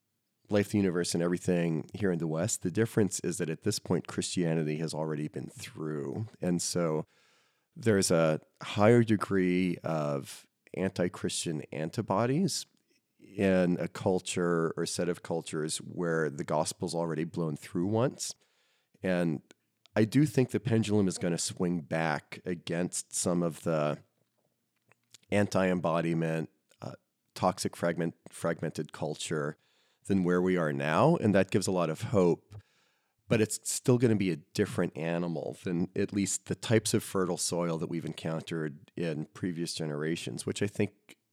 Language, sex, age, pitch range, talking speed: English, male, 40-59, 80-100 Hz, 145 wpm